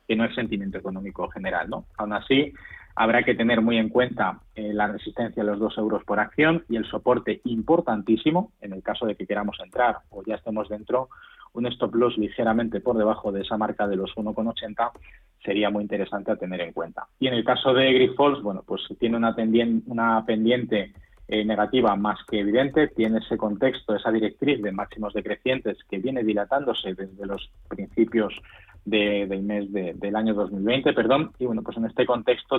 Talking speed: 190 wpm